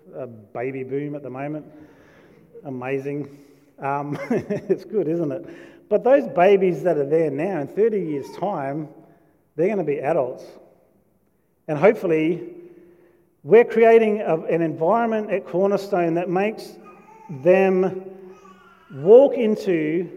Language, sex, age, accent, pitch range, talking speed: English, male, 40-59, Australian, 150-185 Hz, 120 wpm